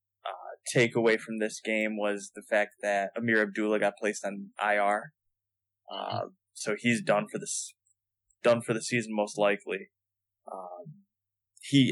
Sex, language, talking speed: male, English, 140 wpm